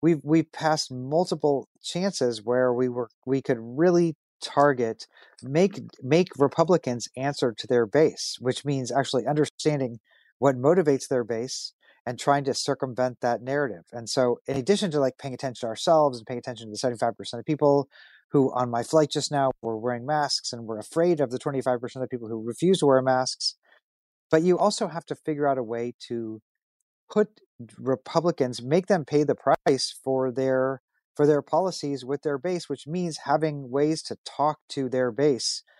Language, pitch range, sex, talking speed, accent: English, 125-150 Hz, male, 180 wpm, American